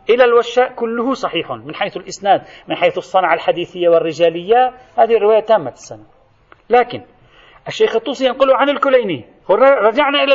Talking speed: 135 wpm